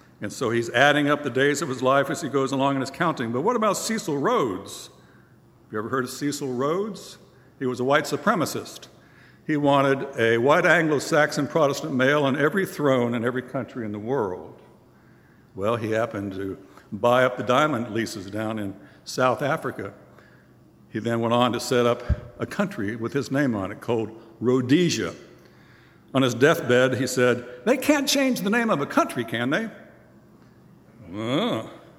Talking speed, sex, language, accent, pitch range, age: 180 wpm, male, English, American, 115-160 Hz, 60-79